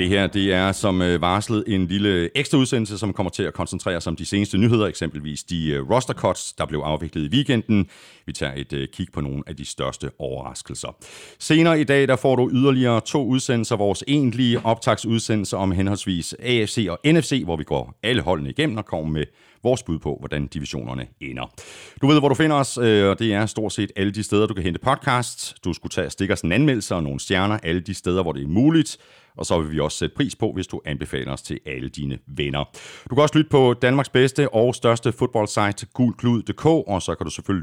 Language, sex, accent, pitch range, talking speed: Danish, male, native, 80-120 Hz, 215 wpm